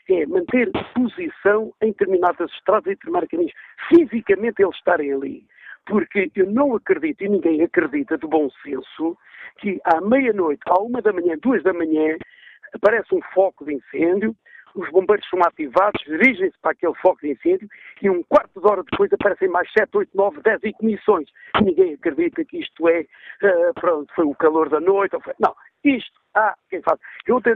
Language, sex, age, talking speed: Portuguese, male, 50-69, 185 wpm